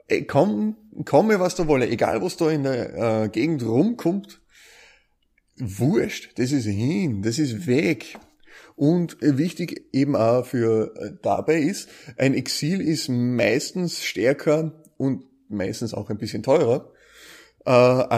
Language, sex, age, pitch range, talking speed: German, male, 30-49, 110-145 Hz, 135 wpm